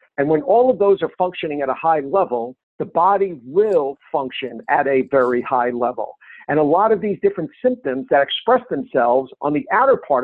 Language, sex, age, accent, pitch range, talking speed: English, male, 50-69, American, 140-200 Hz, 200 wpm